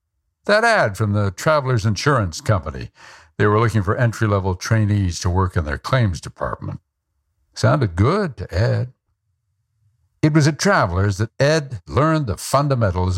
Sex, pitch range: male, 95-130 Hz